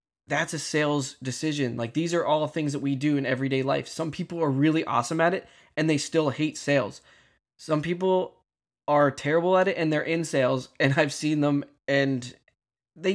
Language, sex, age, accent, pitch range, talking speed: English, male, 20-39, American, 130-155 Hz, 195 wpm